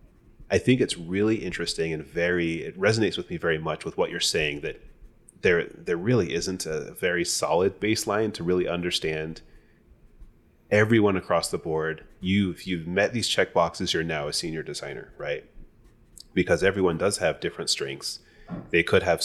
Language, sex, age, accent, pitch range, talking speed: English, male, 30-49, American, 80-95 Hz, 165 wpm